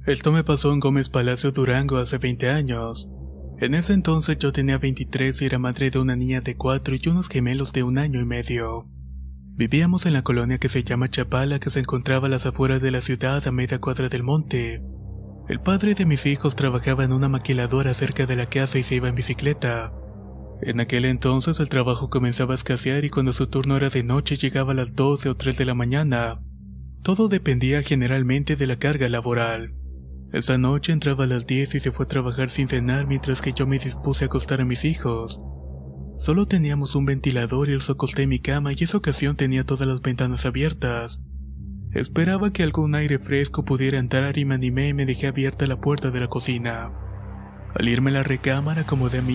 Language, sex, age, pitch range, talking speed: Spanish, male, 20-39, 125-140 Hz, 210 wpm